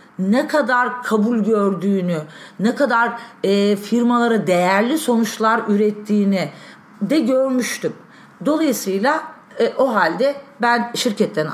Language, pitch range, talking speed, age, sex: Turkish, 200-260 Hz, 90 wpm, 40-59, female